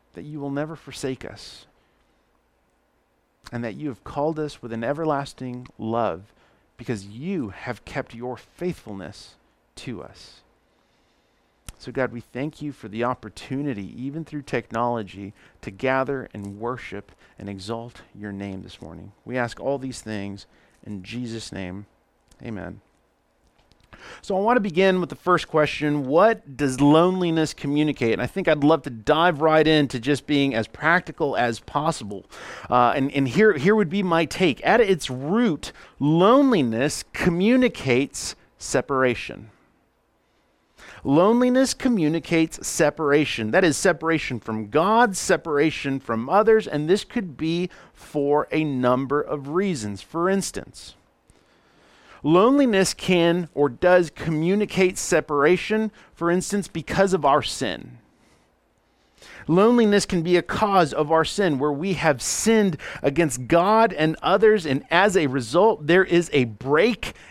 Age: 40-59